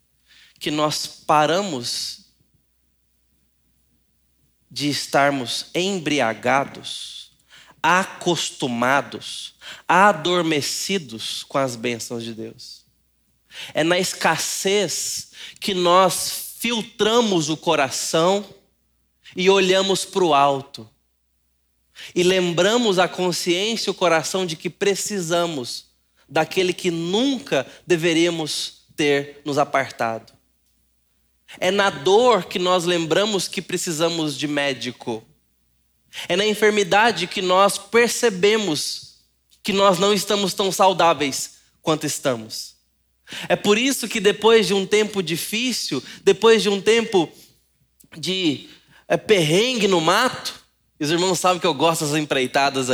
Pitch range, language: 130-195 Hz, Portuguese